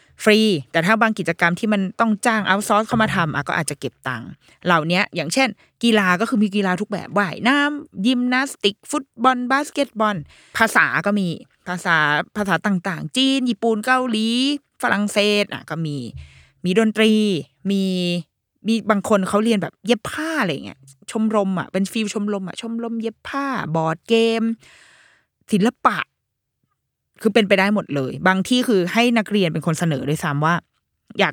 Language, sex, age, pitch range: Thai, female, 20-39, 165-220 Hz